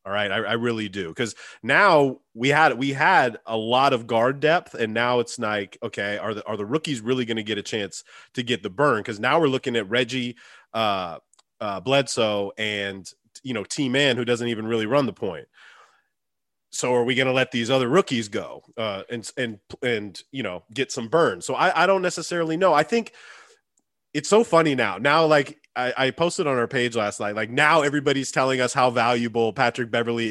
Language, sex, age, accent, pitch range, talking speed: English, male, 30-49, American, 115-145 Hz, 210 wpm